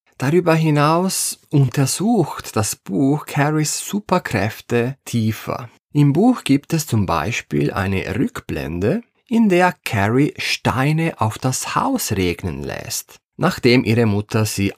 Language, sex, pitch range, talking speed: German, male, 100-150 Hz, 120 wpm